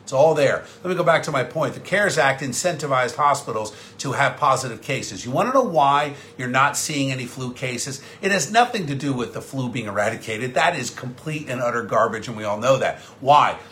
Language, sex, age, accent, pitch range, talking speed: English, male, 50-69, American, 130-185 Hz, 225 wpm